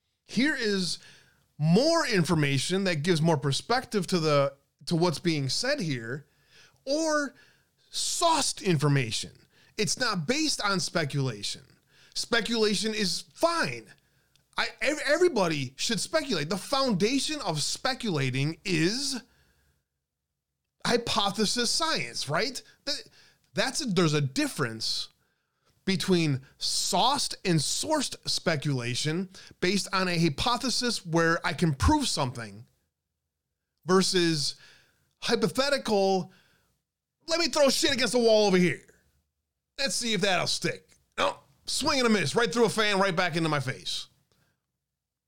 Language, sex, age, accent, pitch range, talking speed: English, male, 20-39, American, 140-230 Hz, 115 wpm